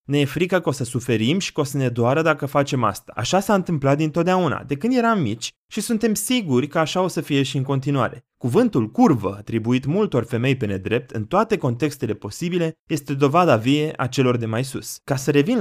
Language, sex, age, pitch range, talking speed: Romanian, male, 20-39, 120-170 Hz, 220 wpm